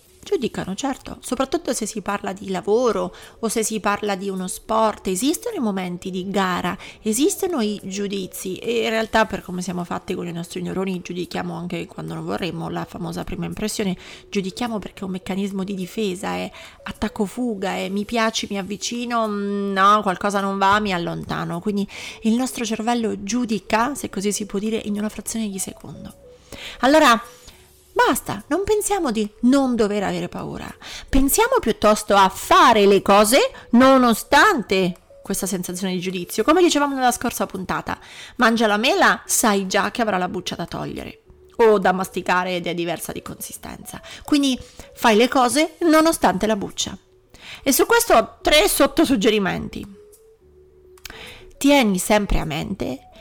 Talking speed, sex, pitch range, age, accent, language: 155 wpm, female, 190-250 Hz, 30-49, native, Italian